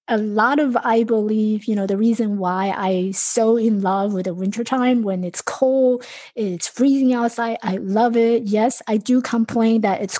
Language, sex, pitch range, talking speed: English, female, 205-255 Hz, 195 wpm